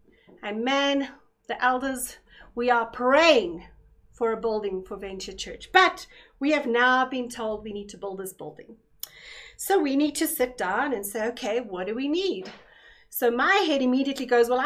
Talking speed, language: 180 wpm, English